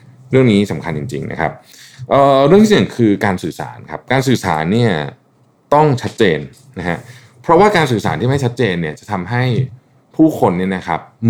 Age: 20-39